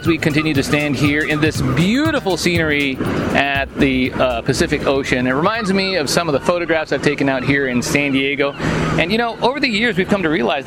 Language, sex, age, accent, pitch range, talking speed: English, male, 40-59, American, 135-170 Hz, 225 wpm